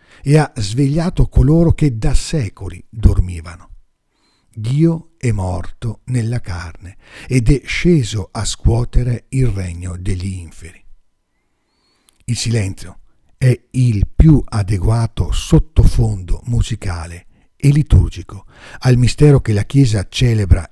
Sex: male